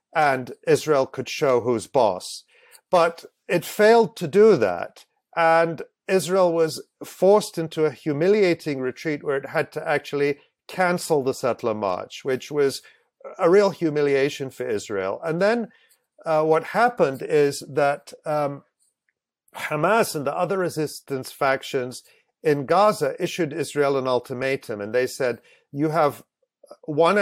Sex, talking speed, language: male, 135 wpm, English